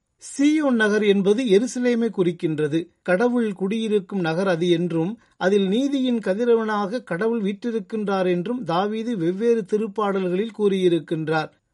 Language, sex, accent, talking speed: Tamil, male, native, 100 wpm